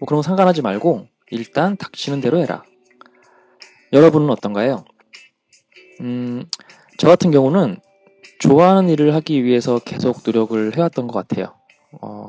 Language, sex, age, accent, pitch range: Korean, male, 20-39, native, 115-165 Hz